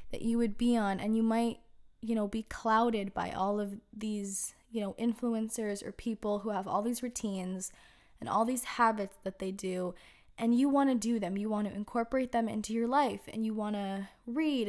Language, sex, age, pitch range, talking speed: English, female, 10-29, 205-235 Hz, 215 wpm